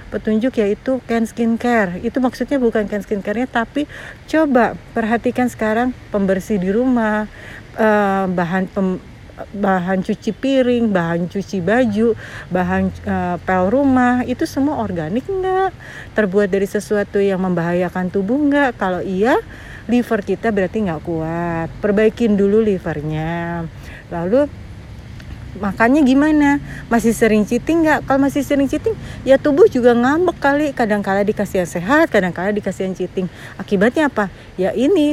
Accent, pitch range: native, 185-255 Hz